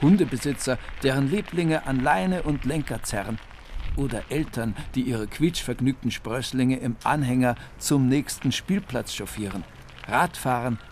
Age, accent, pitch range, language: 60-79, German, 110-145 Hz, German